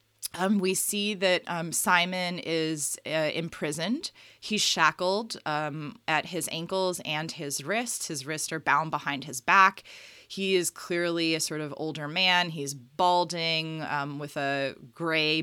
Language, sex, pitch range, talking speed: English, female, 150-185 Hz, 150 wpm